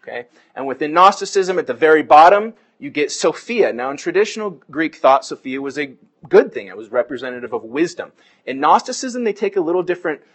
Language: English